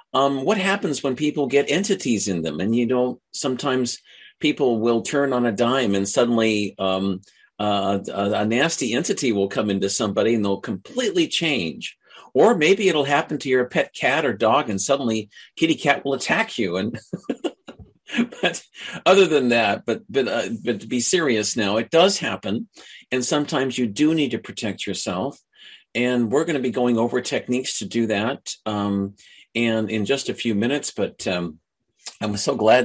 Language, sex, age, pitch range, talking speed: English, male, 50-69, 110-145 Hz, 180 wpm